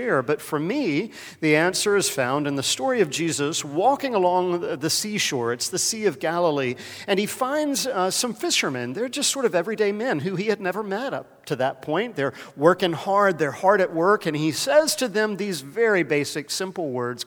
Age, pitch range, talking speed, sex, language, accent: 50-69, 135-195 Hz, 205 wpm, male, English, American